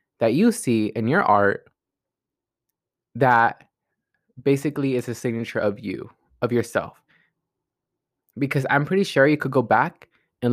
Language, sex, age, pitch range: English, male, 20-39, 120-150 Hz